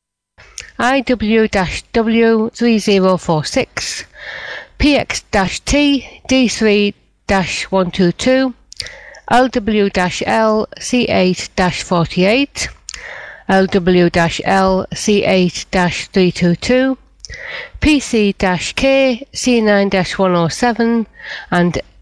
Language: English